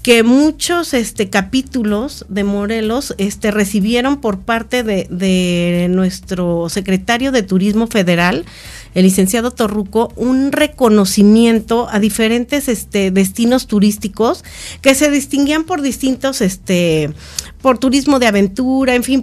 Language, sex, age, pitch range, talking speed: Spanish, female, 40-59, 195-245 Hz, 120 wpm